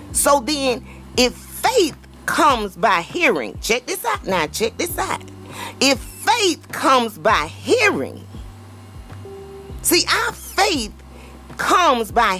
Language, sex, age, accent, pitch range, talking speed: English, female, 40-59, American, 185-265 Hz, 115 wpm